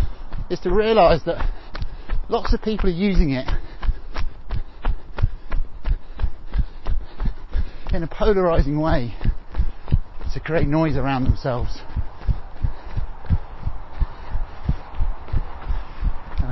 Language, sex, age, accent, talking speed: English, male, 30-49, British, 75 wpm